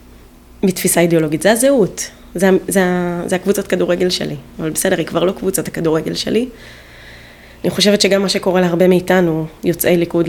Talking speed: 165 wpm